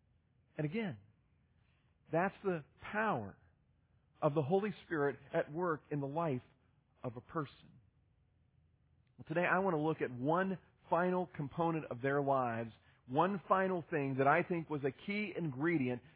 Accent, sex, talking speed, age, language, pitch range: American, male, 150 wpm, 40-59, English, 135-165 Hz